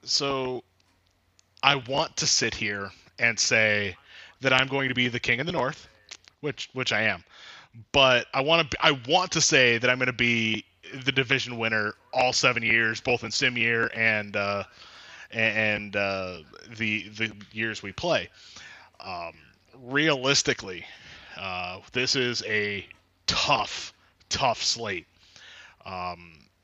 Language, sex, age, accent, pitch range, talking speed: English, male, 20-39, American, 100-120 Hz, 145 wpm